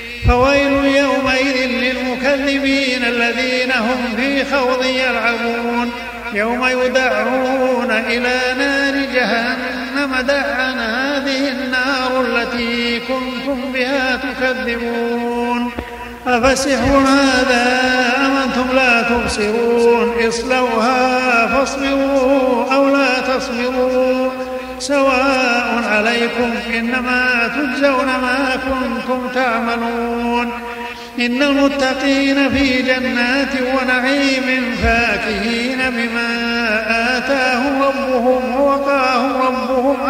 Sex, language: male, Arabic